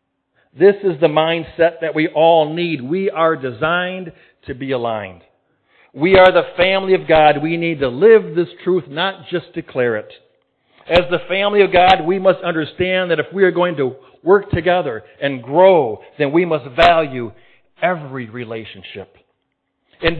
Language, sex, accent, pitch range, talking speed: English, male, American, 145-185 Hz, 165 wpm